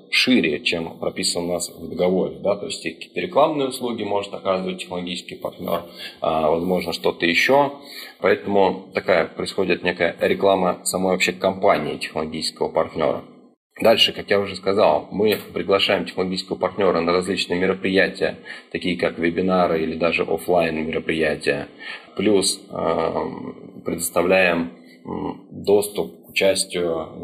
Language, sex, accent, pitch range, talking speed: Russian, male, native, 85-95 Hz, 115 wpm